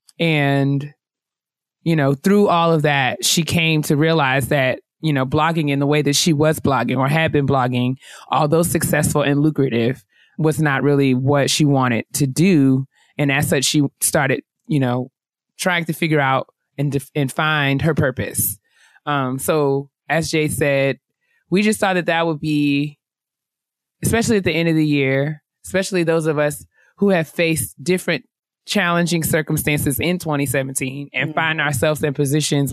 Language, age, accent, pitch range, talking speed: English, 20-39, American, 140-160 Hz, 165 wpm